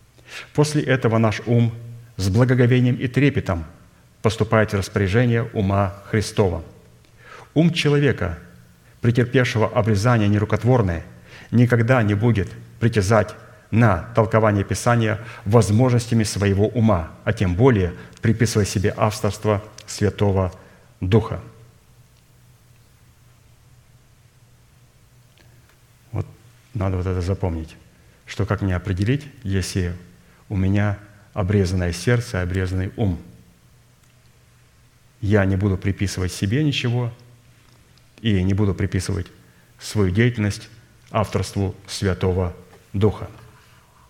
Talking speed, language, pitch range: 90 wpm, Russian, 100-120 Hz